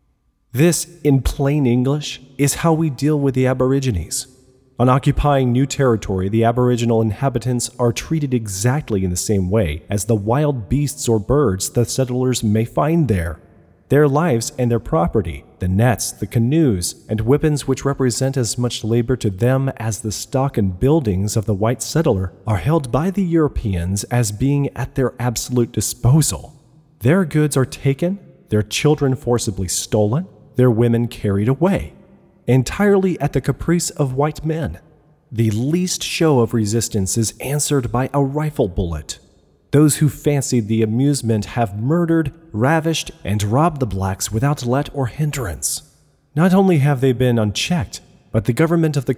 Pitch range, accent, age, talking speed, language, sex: 110-145 Hz, American, 30-49, 160 wpm, English, male